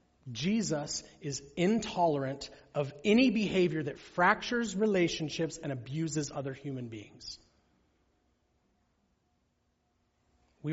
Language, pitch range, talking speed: English, 130-175 Hz, 85 wpm